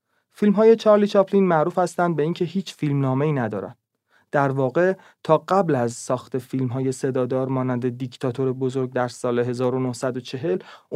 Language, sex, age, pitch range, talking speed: Persian, male, 30-49, 130-185 Hz, 140 wpm